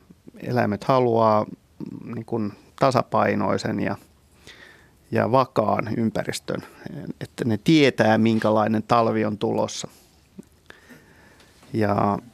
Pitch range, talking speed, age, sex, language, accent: 105-120 Hz, 85 wpm, 30-49, male, Finnish, native